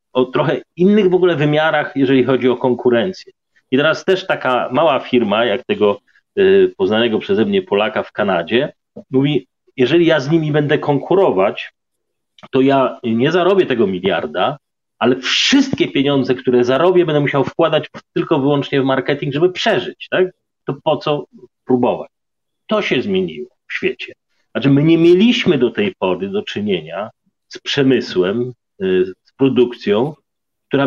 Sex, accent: male, native